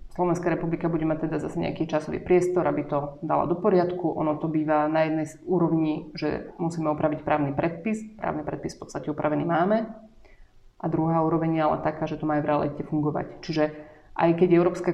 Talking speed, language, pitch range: 195 wpm, Slovak, 160-180 Hz